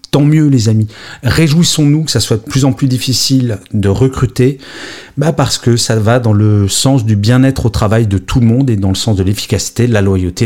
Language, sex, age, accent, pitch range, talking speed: French, male, 40-59, French, 105-135 Hz, 230 wpm